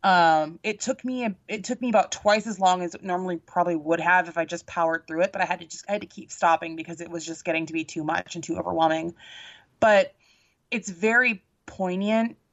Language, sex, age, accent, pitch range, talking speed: English, female, 20-39, American, 165-195 Hz, 235 wpm